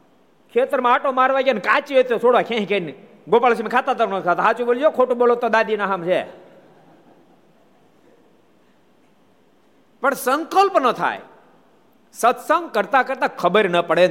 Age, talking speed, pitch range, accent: 50-69, 65 wpm, 175-260 Hz, native